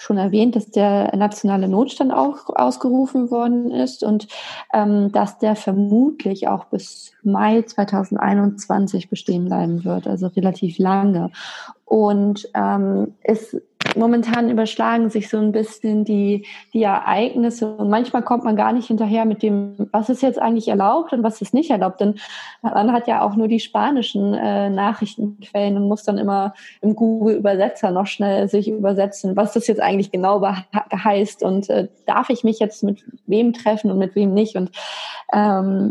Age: 20-39